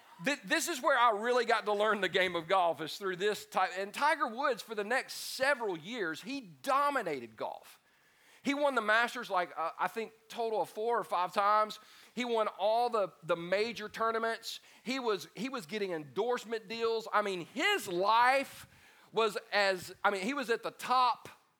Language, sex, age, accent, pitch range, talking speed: English, male, 40-59, American, 170-220 Hz, 190 wpm